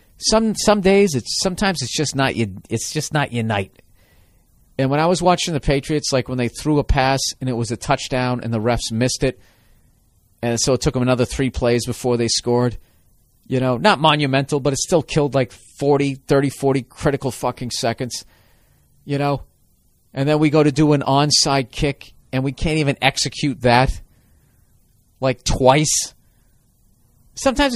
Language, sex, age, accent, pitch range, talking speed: English, male, 40-59, American, 125-170 Hz, 180 wpm